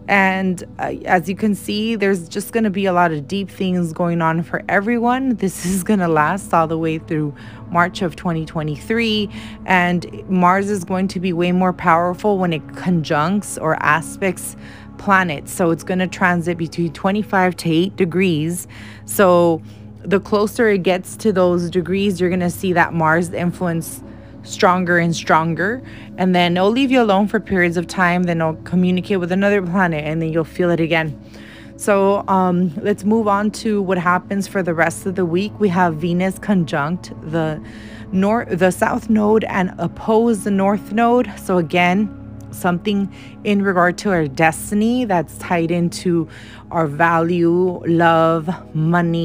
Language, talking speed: English, 170 wpm